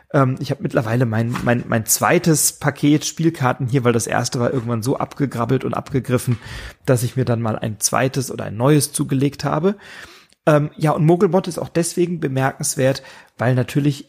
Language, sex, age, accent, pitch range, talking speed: German, male, 30-49, German, 120-145 Hz, 175 wpm